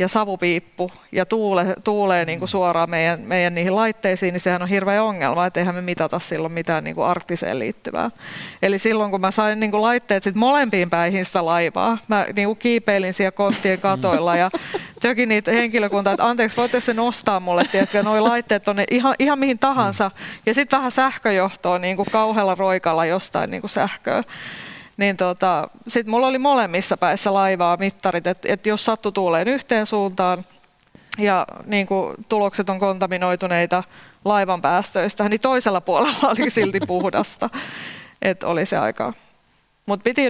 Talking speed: 155 wpm